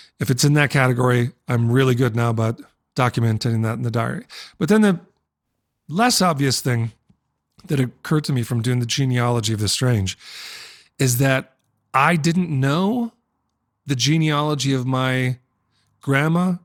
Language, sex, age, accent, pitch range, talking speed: English, male, 30-49, American, 120-150 Hz, 150 wpm